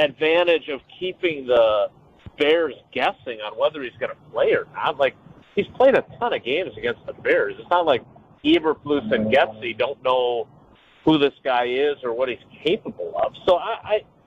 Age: 50-69